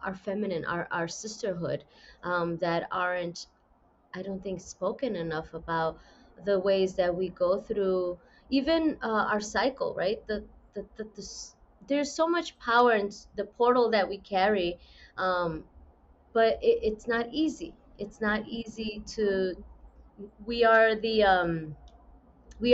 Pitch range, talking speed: 185-235 Hz, 145 wpm